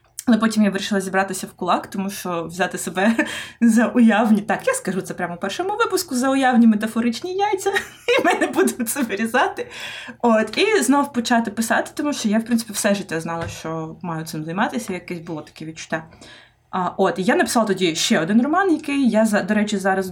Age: 20-39